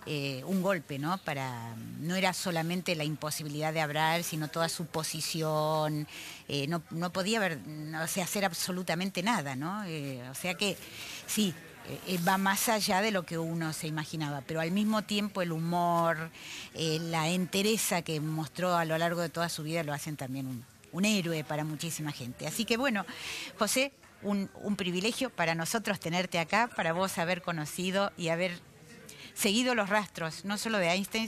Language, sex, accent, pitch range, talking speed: Spanish, female, Argentinian, 160-200 Hz, 170 wpm